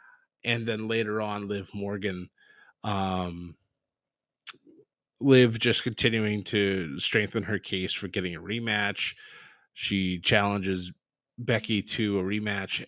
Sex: male